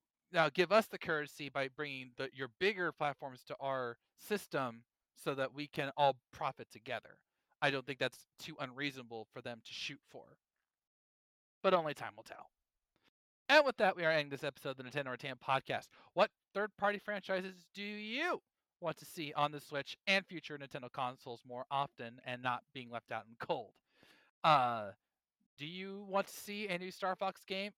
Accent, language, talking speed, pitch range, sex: American, English, 180 wpm, 140-185 Hz, male